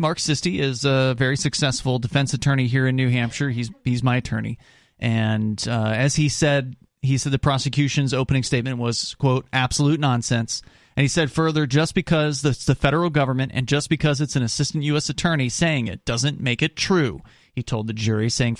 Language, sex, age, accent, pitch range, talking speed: English, male, 30-49, American, 125-160 Hz, 195 wpm